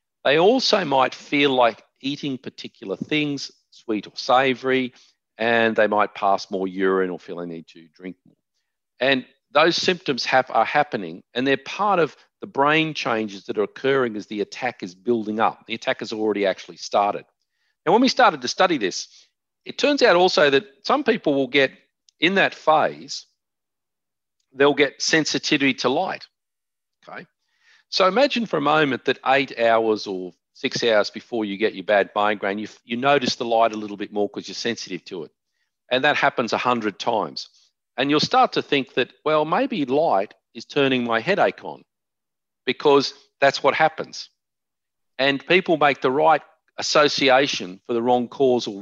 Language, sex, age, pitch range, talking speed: English, male, 50-69, 110-145 Hz, 175 wpm